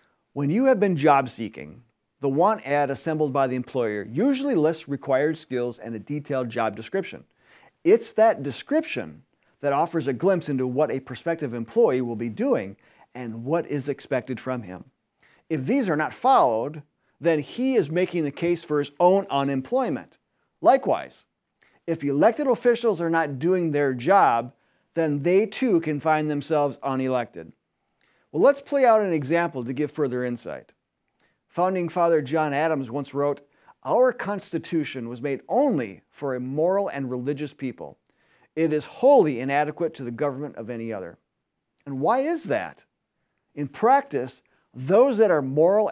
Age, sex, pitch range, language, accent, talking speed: 40-59, male, 130-175 Hz, English, American, 155 wpm